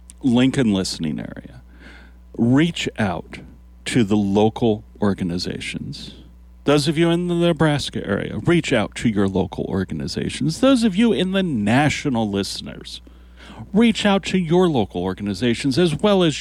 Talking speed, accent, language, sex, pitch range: 140 wpm, American, English, male, 95-135 Hz